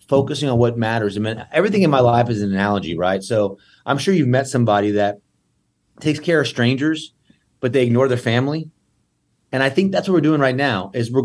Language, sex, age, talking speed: English, male, 30-49, 220 wpm